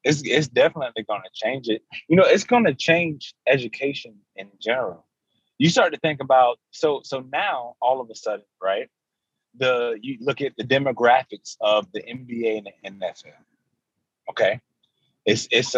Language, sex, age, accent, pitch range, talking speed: English, male, 20-39, American, 110-150 Hz, 165 wpm